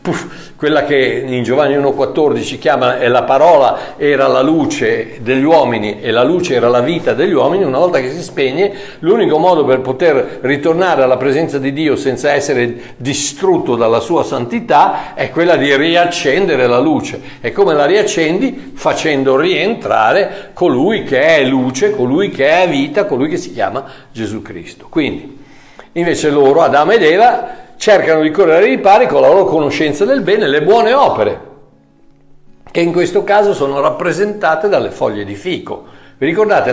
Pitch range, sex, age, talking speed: 125-190 Hz, male, 60-79, 165 wpm